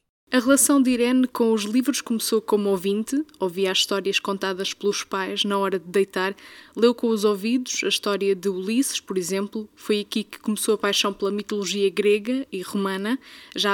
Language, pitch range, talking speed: Portuguese, 195-230 Hz, 185 wpm